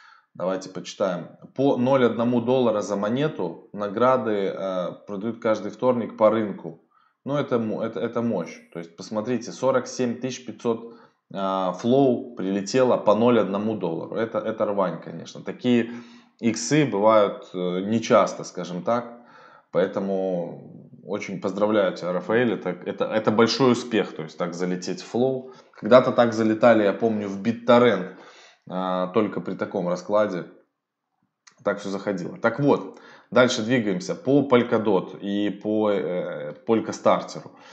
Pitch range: 95-120 Hz